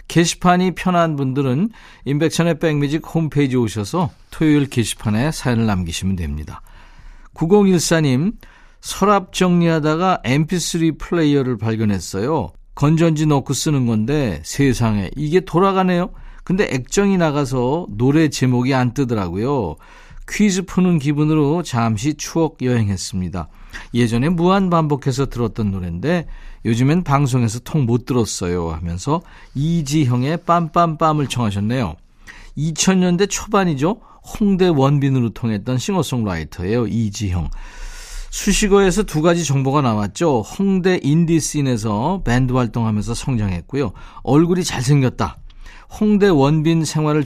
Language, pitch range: Korean, 115-170 Hz